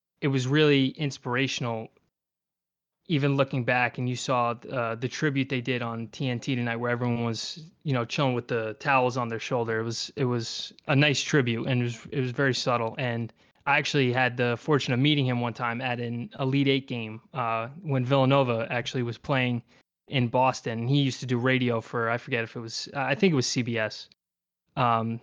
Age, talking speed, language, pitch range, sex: 20-39, 200 wpm, English, 120-145 Hz, male